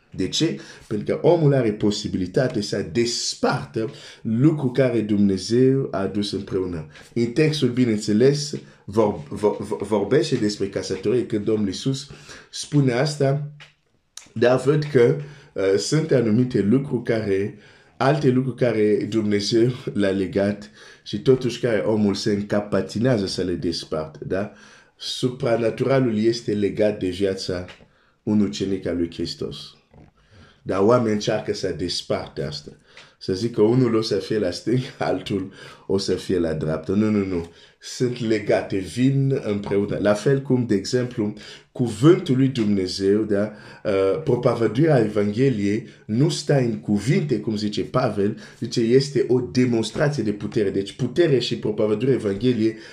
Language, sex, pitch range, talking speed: Romanian, male, 105-130 Hz, 115 wpm